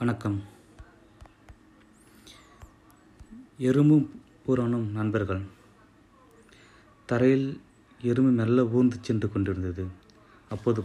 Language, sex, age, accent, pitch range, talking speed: Tamil, male, 30-49, native, 100-120 Hz, 60 wpm